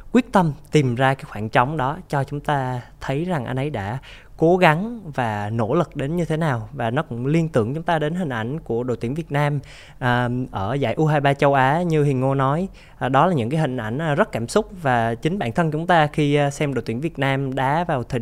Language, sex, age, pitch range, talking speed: Vietnamese, male, 20-39, 120-160 Hz, 240 wpm